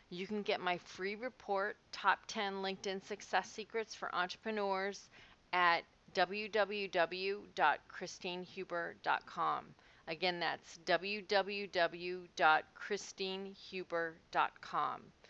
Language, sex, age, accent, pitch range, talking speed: English, female, 40-59, American, 180-210 Hz, 70 wpm